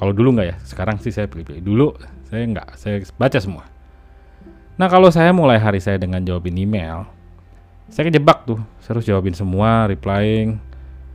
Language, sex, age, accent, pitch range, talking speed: Indonesian, male, 30-49, native, 85-110 Hz, 165 wpm